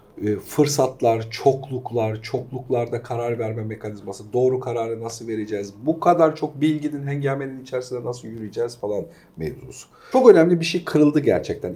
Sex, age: male, 50-69